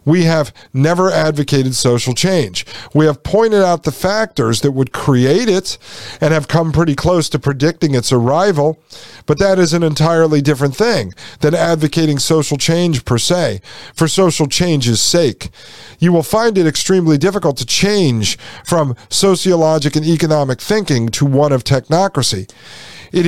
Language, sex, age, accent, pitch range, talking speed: English, male, 50-69, American, 130-170 Hz, 155 wpm